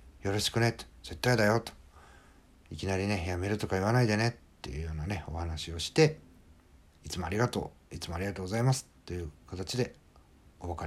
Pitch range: 80-110 Hz